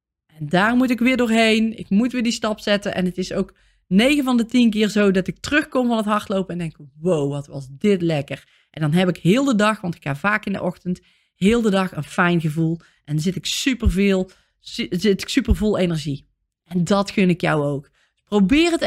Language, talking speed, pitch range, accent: Dutch, 225 wpm, 180-240 Hz, Dutch